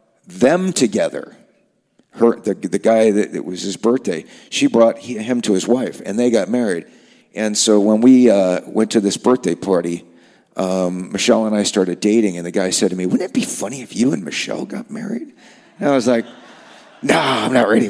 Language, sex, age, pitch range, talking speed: English, male, 40-59, 95-125 Hz, 210 wpm